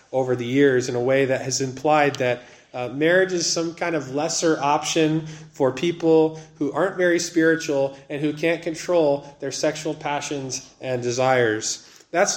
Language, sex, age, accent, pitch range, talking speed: English, male, 20-39, American, 150-195 Hz, 165 wpm